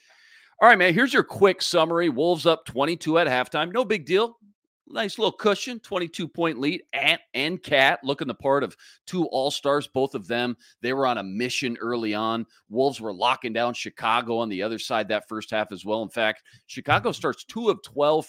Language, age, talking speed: English, 40-59, 195 wpm